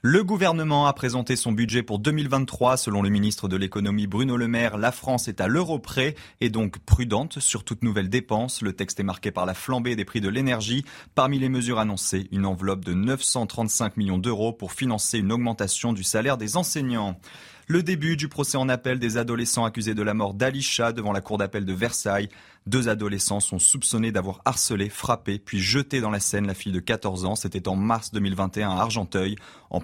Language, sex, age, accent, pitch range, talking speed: French, male, 30-49, French, 100-125 Hz, 205 wpm